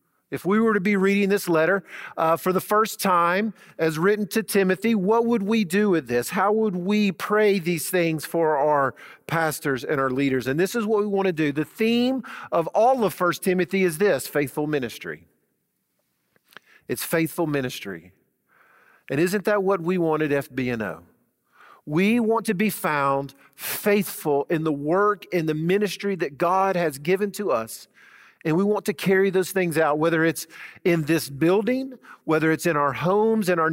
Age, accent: 50-69, American